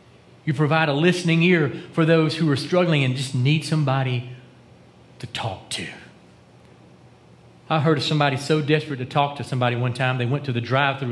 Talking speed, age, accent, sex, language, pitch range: 185 wpm, 40-59, American, male, English, 115-155 Hz